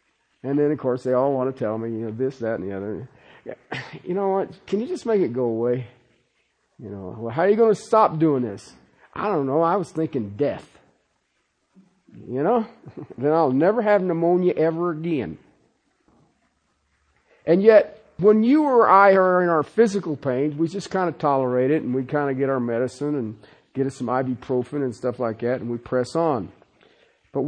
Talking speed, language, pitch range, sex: 200 wpm, English, 125-195 Hz, male